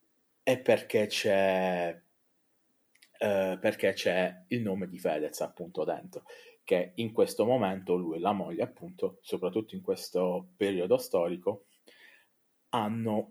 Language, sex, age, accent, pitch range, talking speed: Italian, male, 30-49, native, 95-160 Hz, 120 wpm